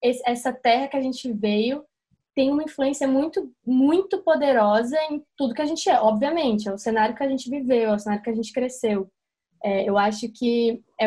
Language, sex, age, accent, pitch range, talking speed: Portuguese, female, 10-29, Brazilian, 220-275 Hz, 210 wpm